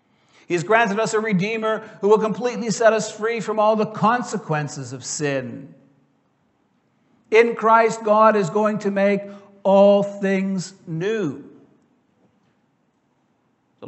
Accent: American